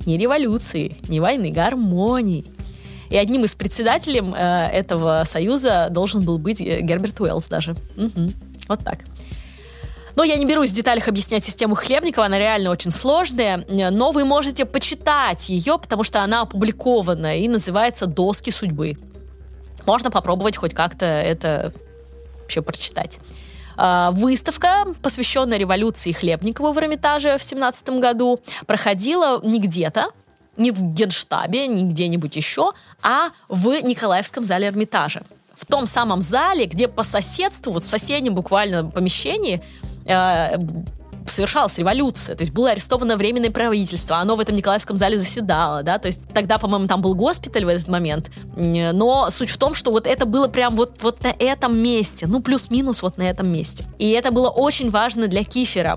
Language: Russian